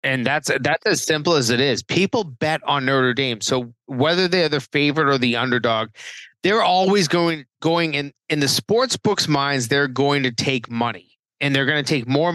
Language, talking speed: English, 205 wpm